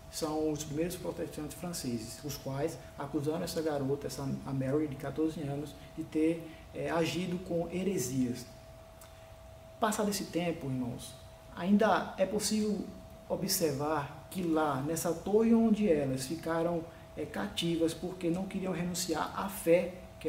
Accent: Brazilian